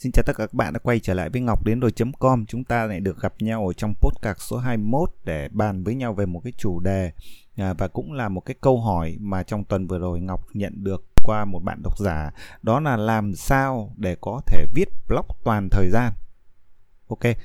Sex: male